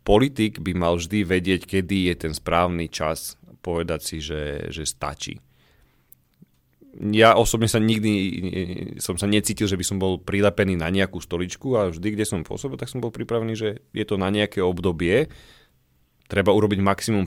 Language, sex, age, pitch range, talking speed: Slovak, male, 30-49, 85-110 Hz, 170 wpm